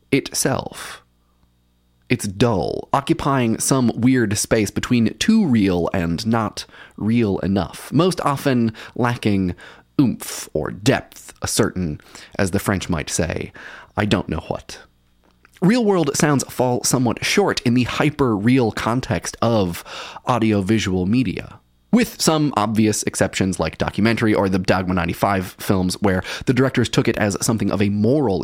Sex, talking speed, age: male, 135 wpm, 30-49